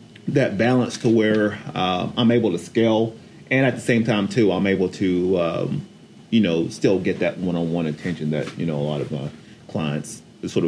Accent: American